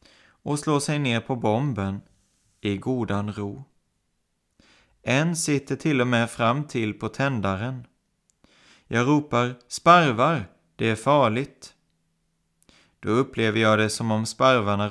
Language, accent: Swedish, native